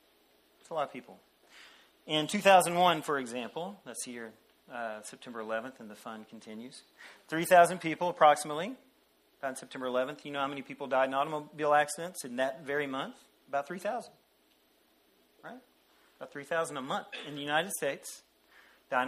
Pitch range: 130-175 Hz